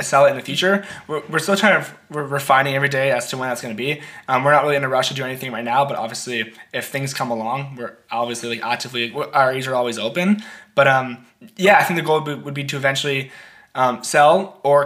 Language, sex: English, male